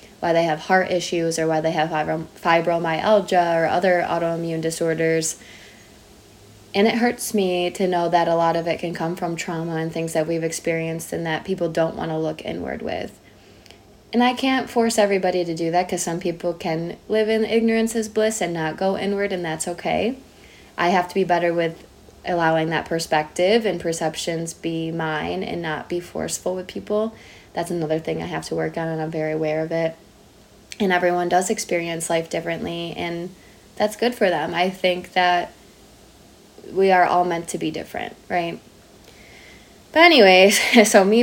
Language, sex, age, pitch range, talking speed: English, female, 20-39, 165-185 Hz, 185 wpm